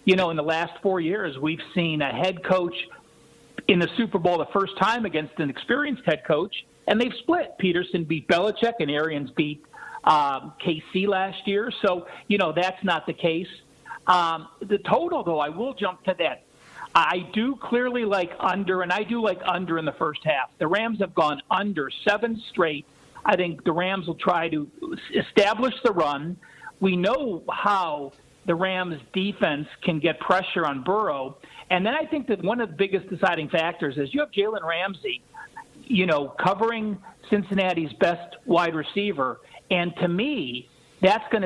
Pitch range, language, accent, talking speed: 165-205 Hz, English, American, 180 wpm